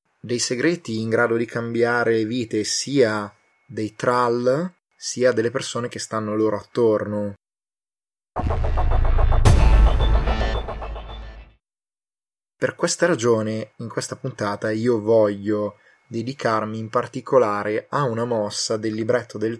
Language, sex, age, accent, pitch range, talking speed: Italian, male, 20-39, native, 105-120 Hz, 105 wpm